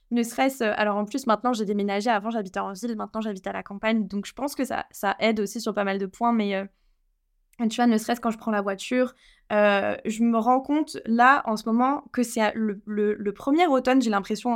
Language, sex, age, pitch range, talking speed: French, female, 20-39, 215-265 Hz, 245 wpm